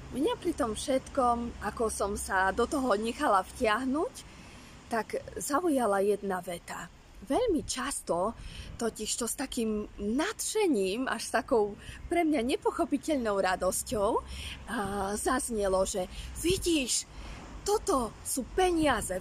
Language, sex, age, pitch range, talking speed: Slovak, female, 20-39, 205-295 Hz, 110 wpm